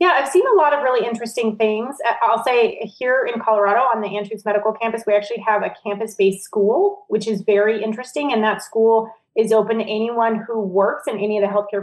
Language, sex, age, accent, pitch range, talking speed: English, female, 30-49, American, 200-230 Hz, 220 wpm